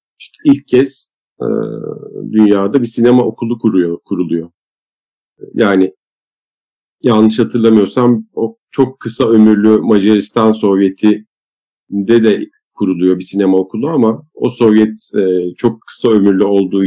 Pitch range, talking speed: 100-120 Hz, 110 wpm